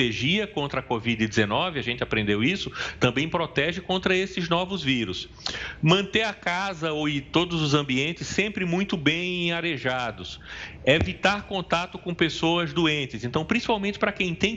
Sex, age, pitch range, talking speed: male, 40-59, 135-190 Hz, 140 wpm